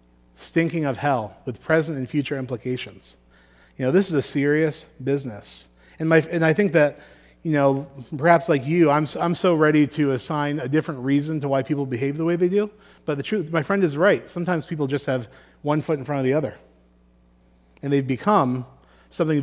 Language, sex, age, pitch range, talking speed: English, male, 30-49, 115-155 Hz, 205 wpm